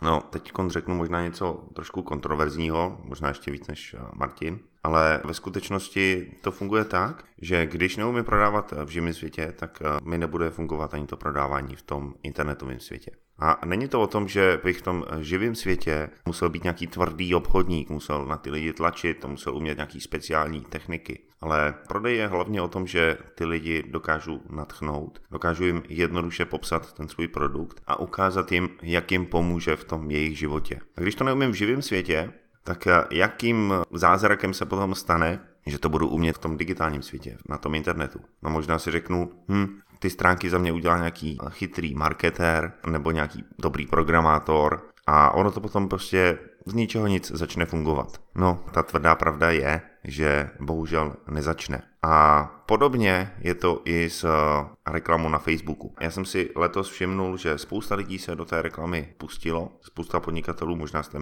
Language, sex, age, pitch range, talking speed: Czech, male, 30-49, 75-90 Hz, 170 wpm